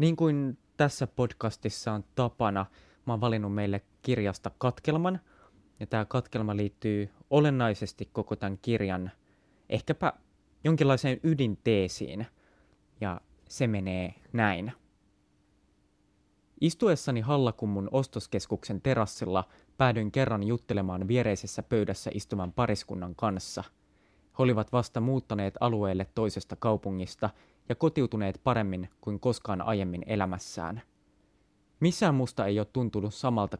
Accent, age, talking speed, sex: native, 20-39, 105 wpm, male